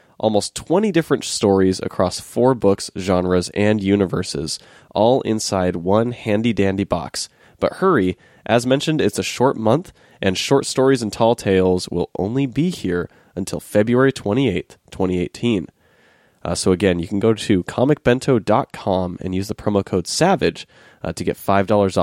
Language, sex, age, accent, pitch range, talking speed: English, male, 20-39, American, 95-120 Hz, 150 wpm